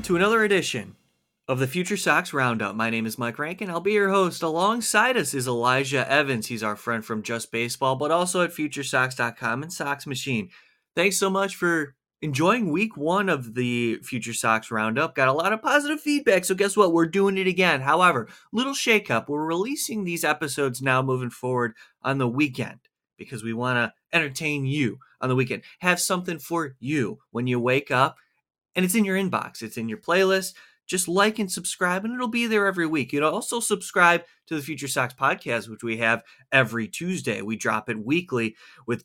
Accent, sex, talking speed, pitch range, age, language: American, male, 200 wpm, 125-190 Hz, 30-49, English